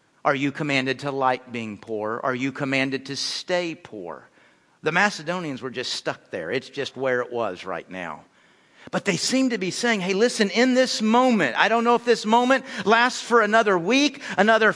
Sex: male